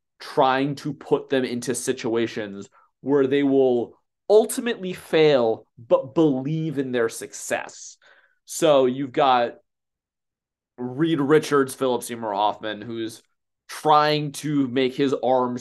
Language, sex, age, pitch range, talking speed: English, male, 30-49, 125-180 Hz, 115 wpm